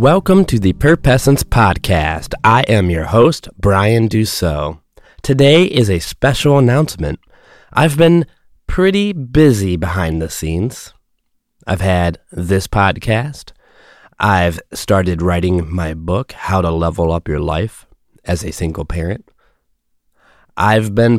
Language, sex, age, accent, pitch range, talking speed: English, male, 30-49, American, 85-110 Hz, 125 wpm